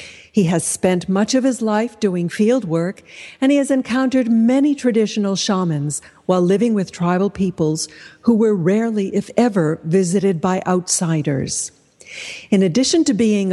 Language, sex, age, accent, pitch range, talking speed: English, female, 60-79, American, 175-225 Hz, 150 wpm